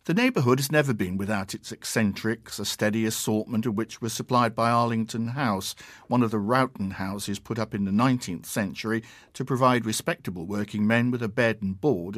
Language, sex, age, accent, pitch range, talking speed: English, male, 50-69, British, 100-125 Hz, 190 wpm